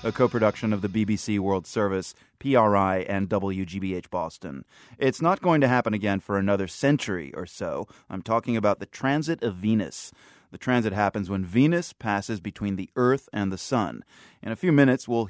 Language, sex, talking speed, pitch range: English, male, 180 wpm, 100-130 Hz